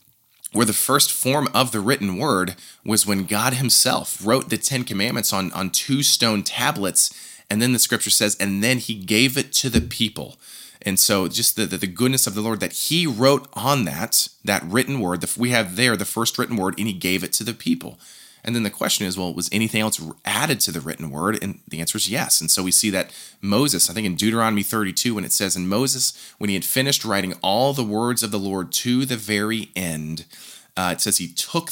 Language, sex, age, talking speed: English, male, 20-39, 230 wpm